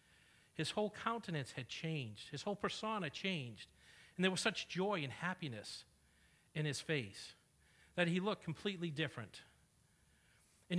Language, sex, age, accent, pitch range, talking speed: English, male, 50-69, American, 125-175 Hz, 140 wpm